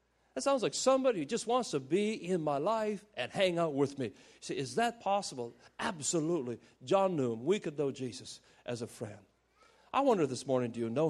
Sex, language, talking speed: male, English, 205 wpm